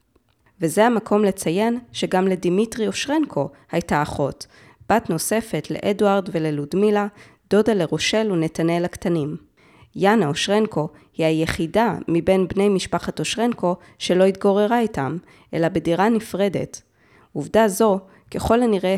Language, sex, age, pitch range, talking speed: Hebrew, female, 20-39, 160-205 Hz, 110 wpm